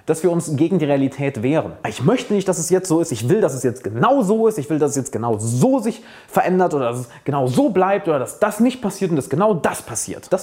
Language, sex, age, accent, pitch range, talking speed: German, male, 30-49, German, 120-170 Hz, 280 wpm